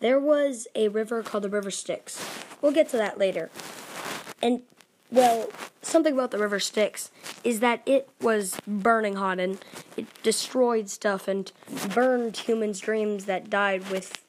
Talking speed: 155 wpm